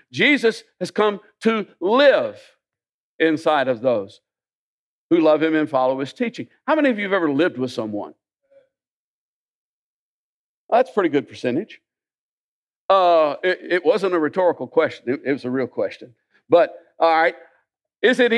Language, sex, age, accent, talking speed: English, male, 60-79, American, 155 wpm